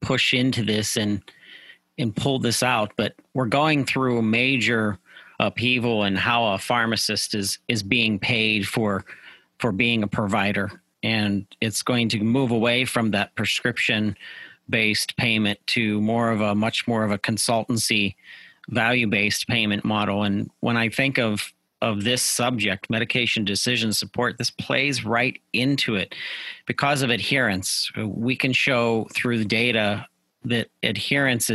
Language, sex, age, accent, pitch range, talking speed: English, male, 40-59, American, 105-120 Hz, 150 wpm